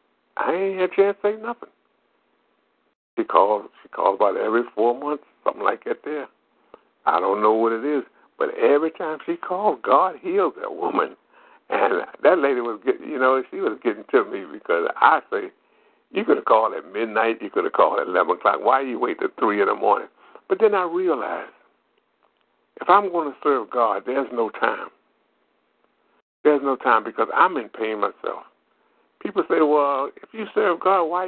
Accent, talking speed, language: American, 190 wpm, English